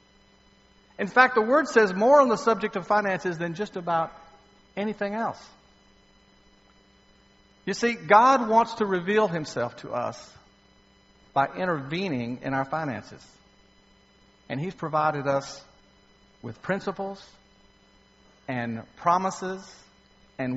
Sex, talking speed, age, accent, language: male, 115 wpm, 50-69, American, English